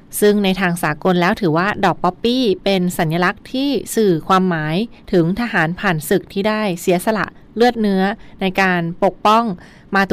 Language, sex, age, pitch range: Thai, female, 20-39, 170-205 Hz